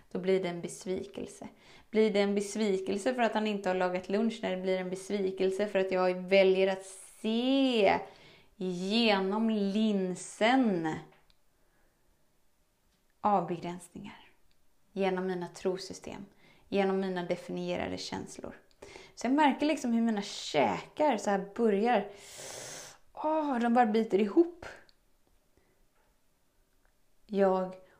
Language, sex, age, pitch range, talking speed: Swedish, female, 20-39, 190-240 Hz, 115 wpm